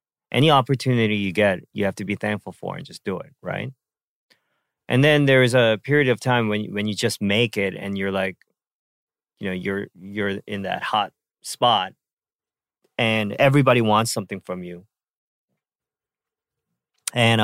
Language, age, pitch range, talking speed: English, 30-49, 100-125 Hz, 160 wpm